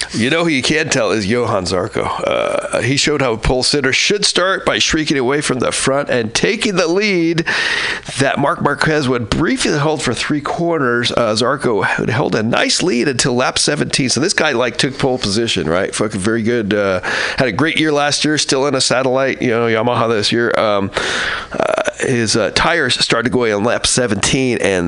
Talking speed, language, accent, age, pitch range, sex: 205 wpm, English, American, 40-59, 105-140 Hz, male